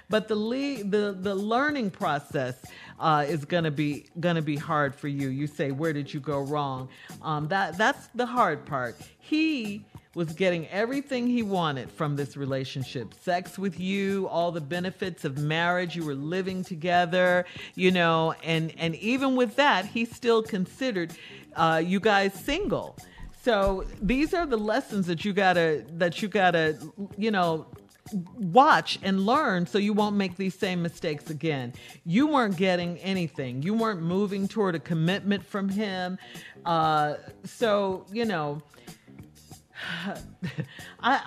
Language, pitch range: English, 160-220 Hz